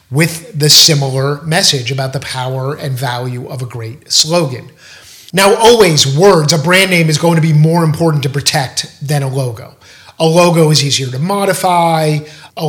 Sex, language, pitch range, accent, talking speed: male, English, 135-160 Hz, American, 175 wpm